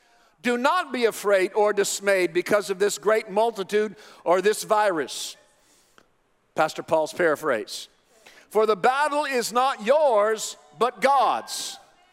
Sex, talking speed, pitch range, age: male, 125 wpm, 180-260 Hz, 50-69